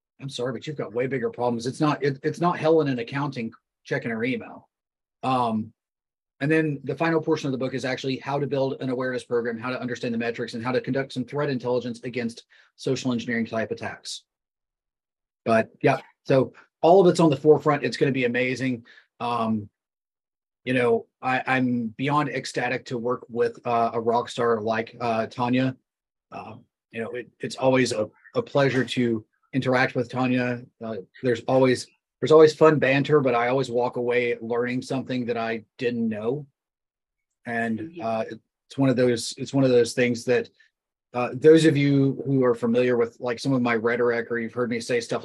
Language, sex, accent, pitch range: English, male, American, 120-140 Hz